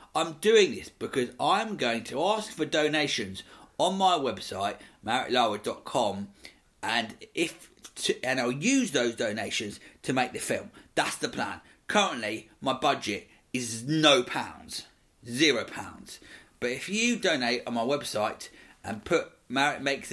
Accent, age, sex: British, 40-59, male